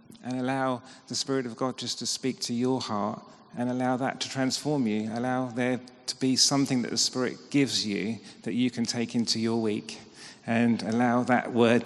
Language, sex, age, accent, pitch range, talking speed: English, male, 40-59, British, 115-130 Hz, 195 wpm